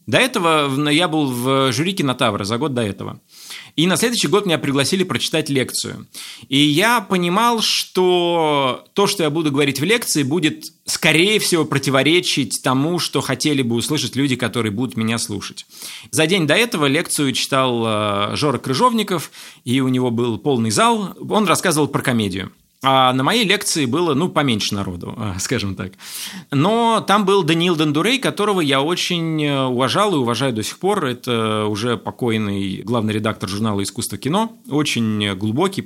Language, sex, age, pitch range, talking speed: Russian, male, 30-49, 115-165 Hz, 160 wpm